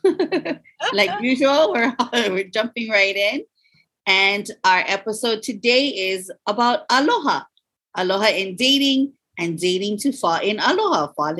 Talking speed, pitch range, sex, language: 125 wpm, 195-275 Hz, female, English